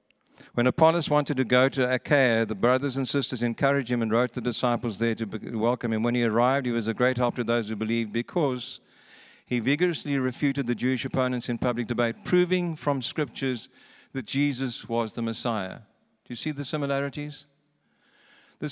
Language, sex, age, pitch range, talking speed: English, male, 50-69, 120-145 Hz, 185 wpm